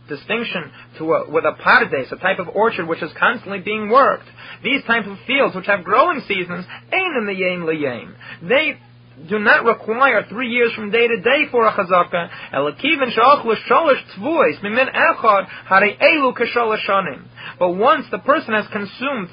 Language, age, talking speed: English, 30-49, 150 wpm